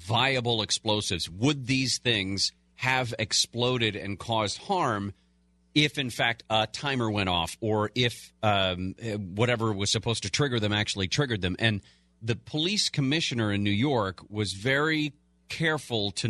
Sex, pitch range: male, 100-130 Hz